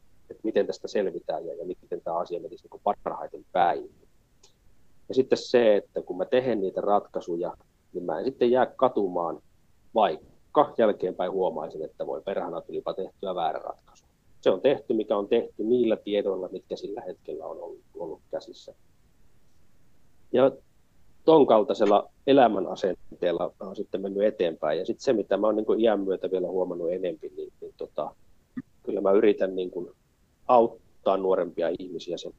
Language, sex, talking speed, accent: Finnish, male, 165 wpm, native